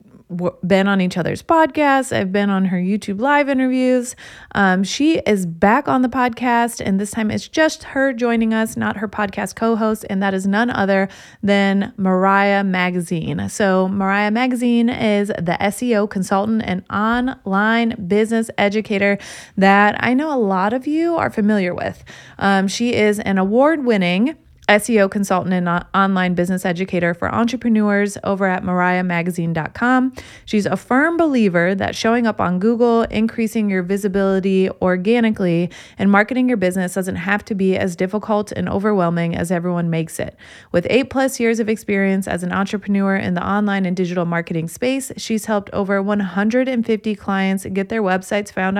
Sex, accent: female, American